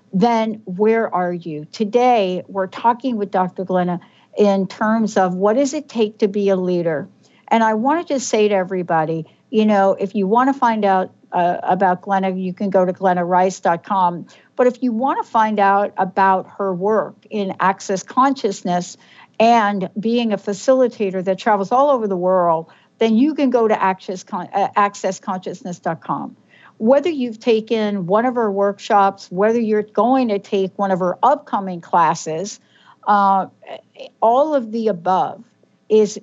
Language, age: English, 60-79